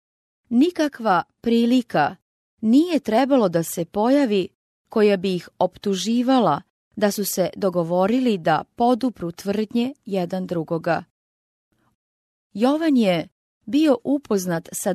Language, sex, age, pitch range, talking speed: English, female, 30-49, 185-245 Hz, 100 wpm